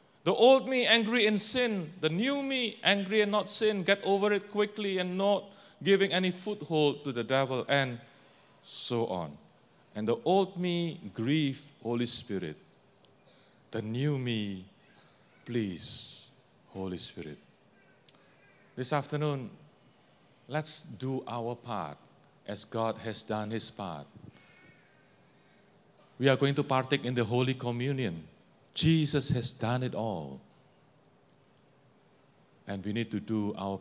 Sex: male